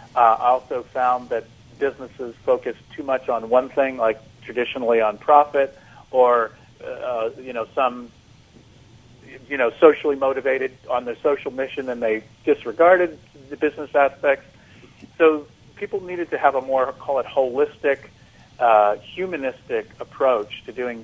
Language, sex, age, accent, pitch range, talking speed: English, male, 40-59, American, 120-145 Hz, 140 wpm